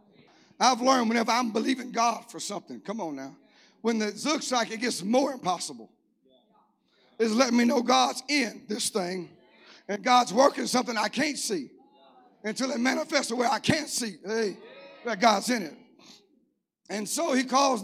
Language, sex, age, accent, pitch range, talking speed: English, male, 50-69, American, 200-250 Hz, 165 wpm